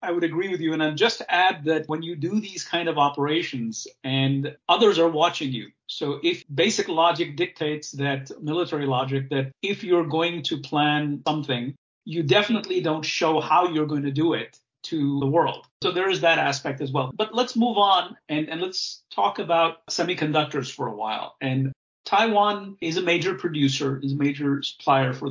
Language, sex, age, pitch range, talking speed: English, male, 50-69, 135-175 Hz, 190 wpm